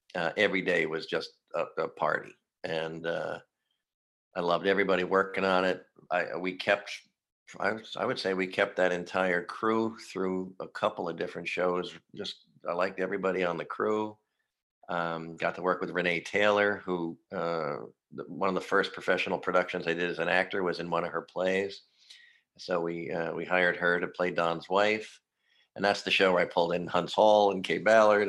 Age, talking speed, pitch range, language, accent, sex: 50-69, 190 wpm, 85-100 Hz, English, American, male